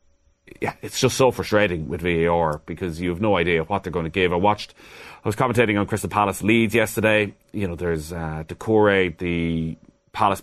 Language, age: English, 30-49